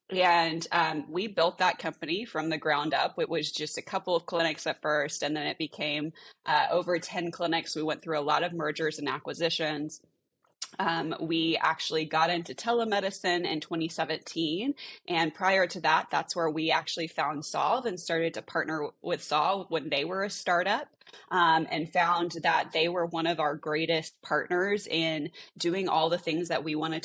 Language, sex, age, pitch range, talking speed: English, female, 20-39, 155-180 Hz, 185 wpm